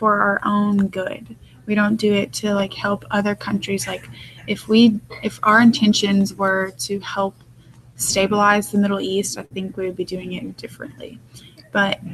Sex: female